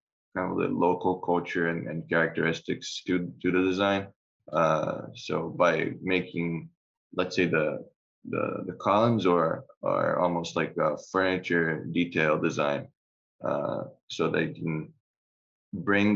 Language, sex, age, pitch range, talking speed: English, male, 20-39, 85-100 Hz, 130 wpm